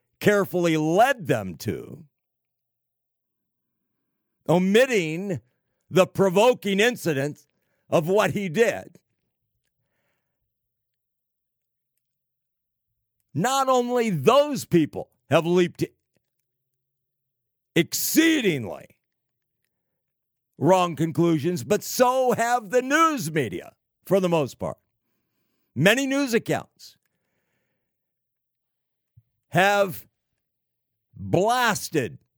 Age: 60-79